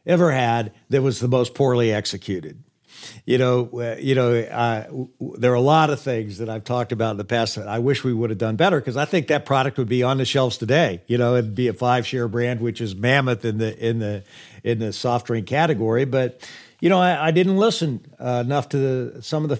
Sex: male